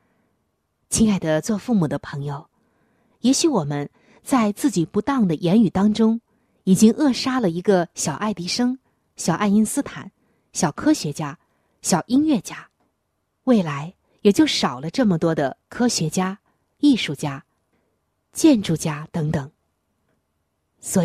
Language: Chinese